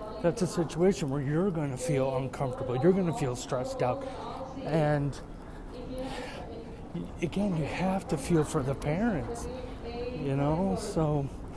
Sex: male